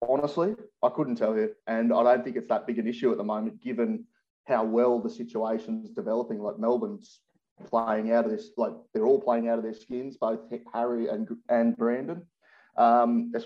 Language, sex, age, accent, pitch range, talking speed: English, male, 30-49, Australian, 115-135 Hz, 200 wpm